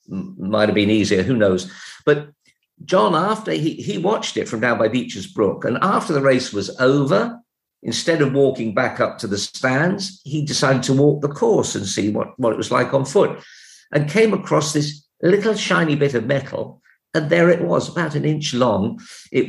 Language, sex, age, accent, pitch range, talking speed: English, male, 50-69, British, 115-170 Hz, 200 wpm